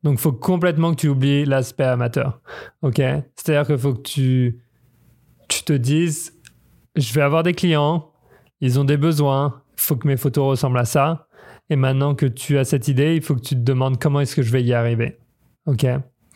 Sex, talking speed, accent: male, 205 wpm, French